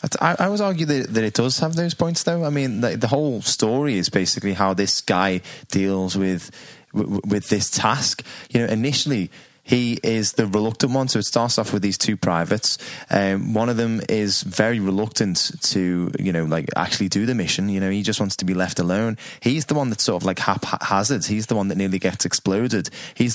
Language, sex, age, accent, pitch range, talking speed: English, male, 20-39, British, 100-120 Hz, 220 wpm